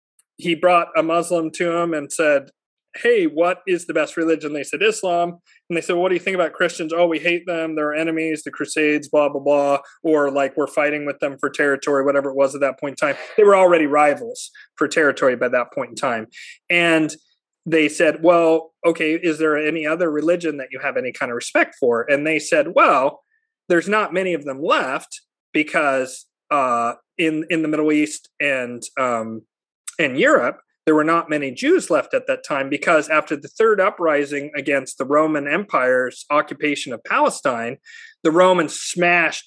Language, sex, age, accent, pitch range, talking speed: English, male, 30-49, American, 145-175 Hz, 195 wpm